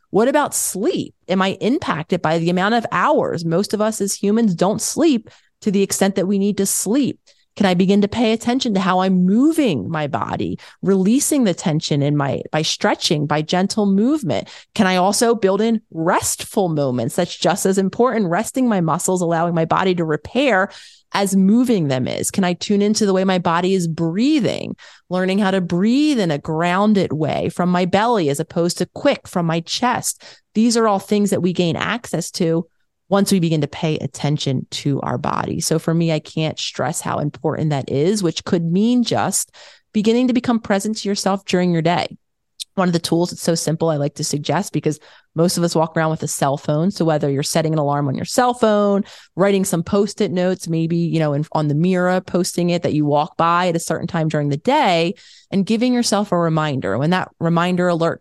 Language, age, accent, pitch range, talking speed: English, 30-49, American, 165-205 Hz, 210 wpm